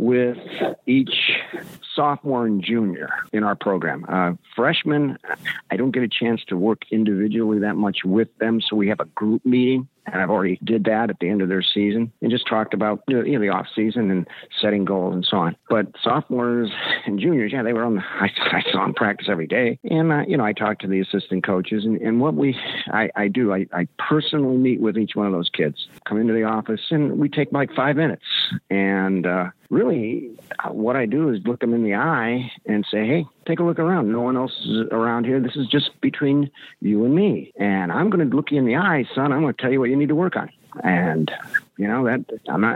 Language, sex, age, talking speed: English, male, 50-69, 235 wpm